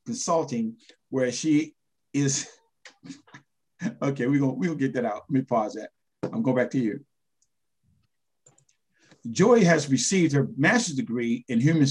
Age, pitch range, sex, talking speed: 50-69, 130-165 Hz, male, 140 wpm